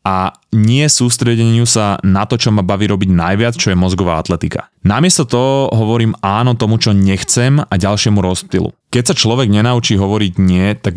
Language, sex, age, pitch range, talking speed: Slovak, male, 20-39, 95-120 Hz, 175 wpm